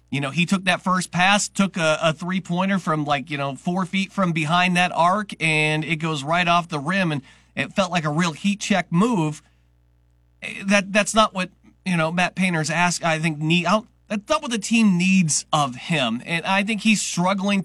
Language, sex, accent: English, male, American